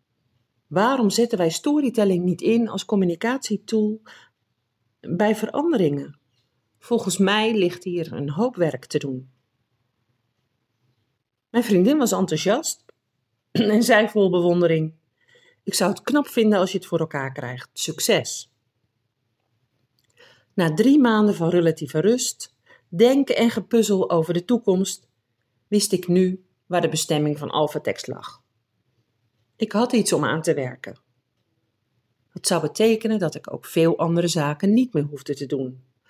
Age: 40-59